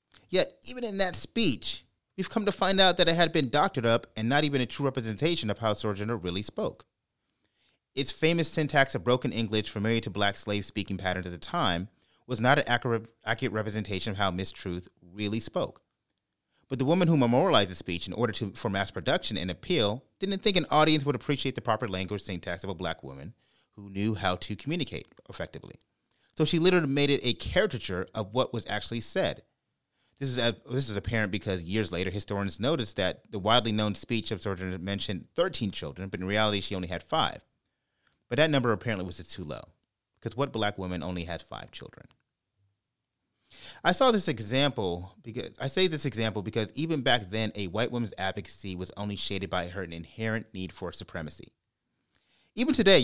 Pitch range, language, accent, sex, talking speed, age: 100-140 Hz, English, American, male, 195 wpm, 30-49